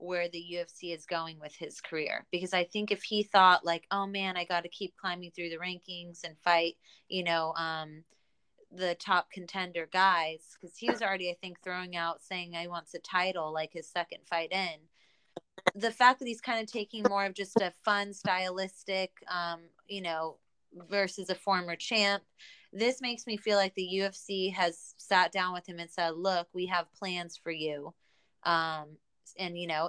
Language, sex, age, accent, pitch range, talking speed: English, female, 20-39, American, 170-205 Hz, 195 wpm